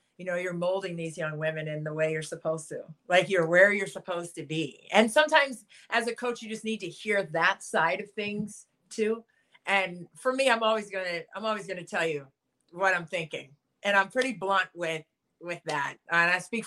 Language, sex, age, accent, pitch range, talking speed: English, female, 30-49, American, 165-195 Hz, 220 wpm